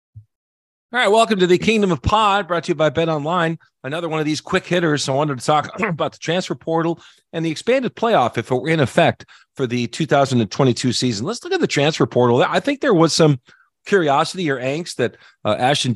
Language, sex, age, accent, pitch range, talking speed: English, male, 40-59, American, 130-175 Hz, 220 wpm